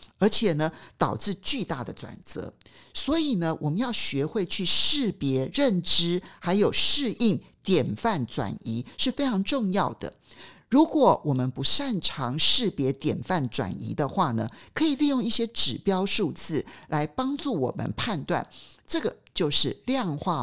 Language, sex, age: Chinese, male, 50-69